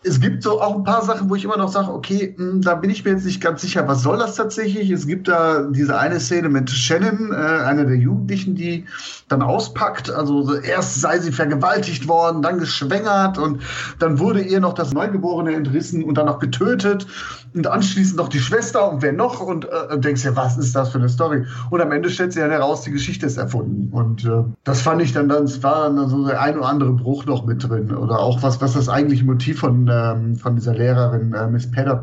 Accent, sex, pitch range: German, male, 125-165 Hz